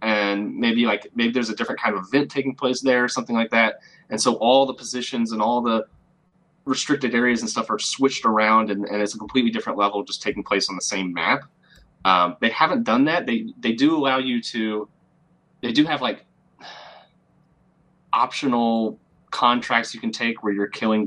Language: English